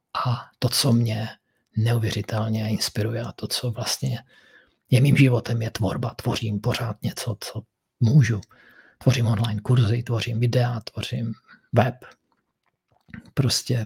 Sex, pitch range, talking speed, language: male, 110-120 Hz, 120 wpm, Czech